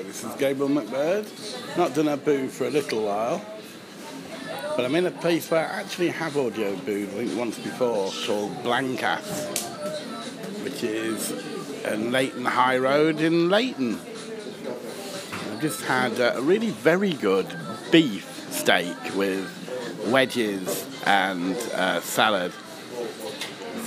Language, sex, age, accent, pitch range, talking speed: English, male, 60-79, British, 115-175 Hz, 130 wpm